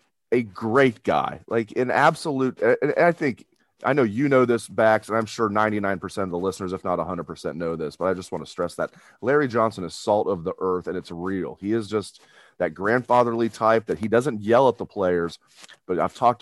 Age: 30-49